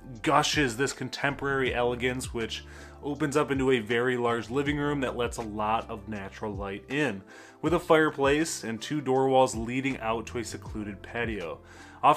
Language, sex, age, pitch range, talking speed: English, male, 20-39, 115-145 Hz, 175 wpm